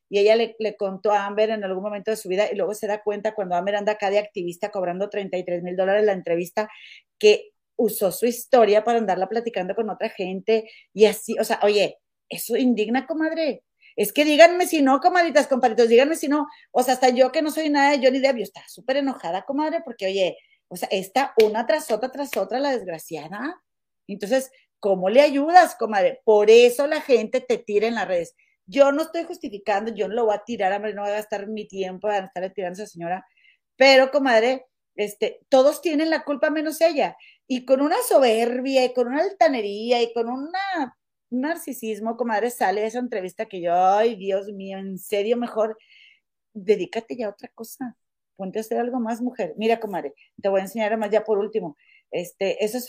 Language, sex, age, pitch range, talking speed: Spanish, female, 40-59, 205-275 Hz, 205 wpm